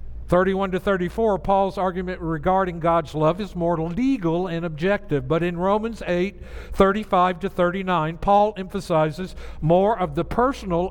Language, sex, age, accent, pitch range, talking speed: English, male, 60-79, American, 150-200 Hz, 145 wpm